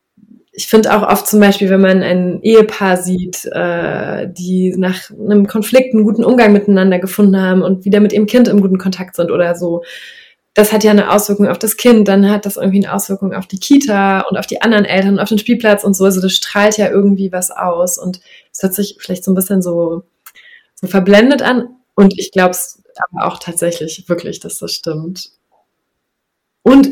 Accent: German